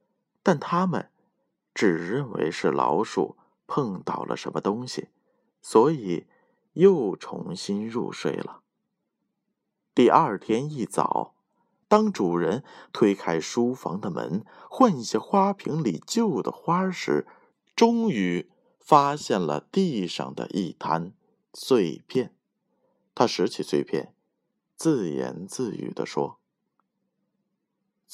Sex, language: male, Chinese